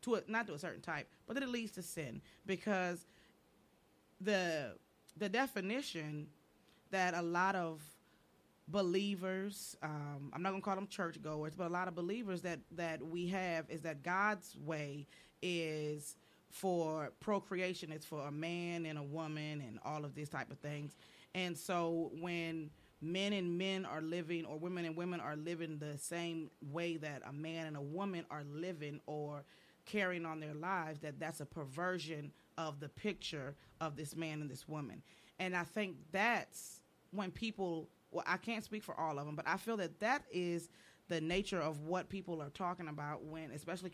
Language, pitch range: English, 155-185 Hz